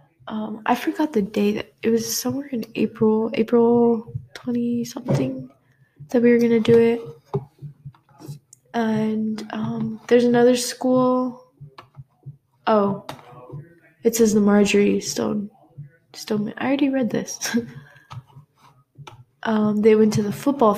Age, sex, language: 10-29, female, English